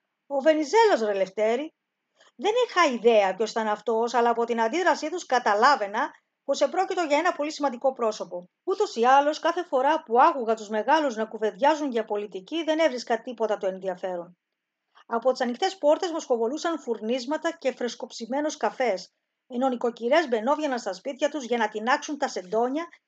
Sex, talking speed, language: female, 155 wpm, Greek